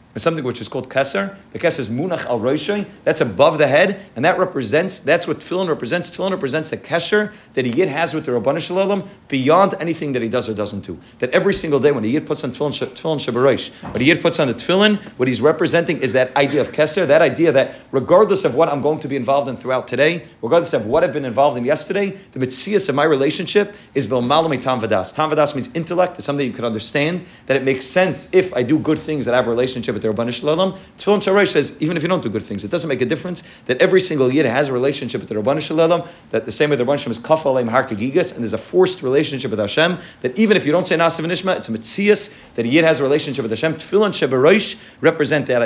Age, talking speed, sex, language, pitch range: 40-59, 250 wpm, male, English, 130-180 Hz